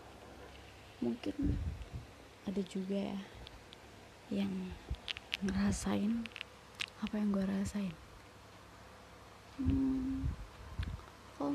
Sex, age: female, 20-39